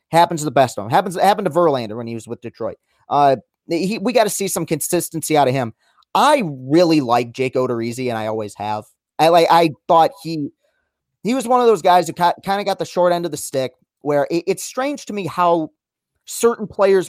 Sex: male